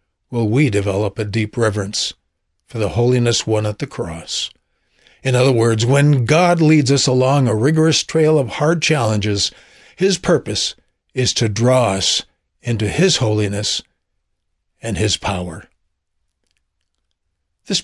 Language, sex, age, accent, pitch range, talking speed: English, male, 60-79, American, 100-140 Hz, 135 wpm